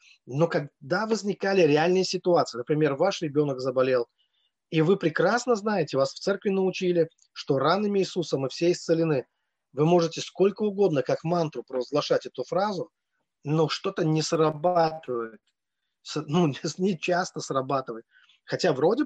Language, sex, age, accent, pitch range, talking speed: Russian, male, 20-39, native, 140-180 Hz, 130 wpm